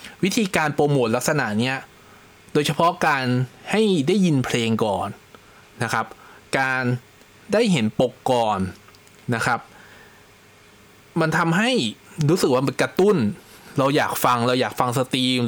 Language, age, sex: Thai, 20-39, male